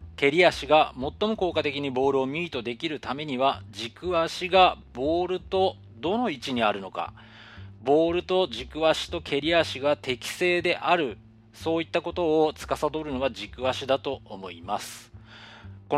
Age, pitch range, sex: 40-59, 100-155 Hz, male